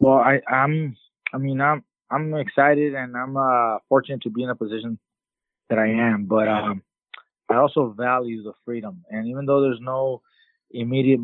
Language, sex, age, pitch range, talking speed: English, male, 20-39, 110-130 Hz, 175 wpm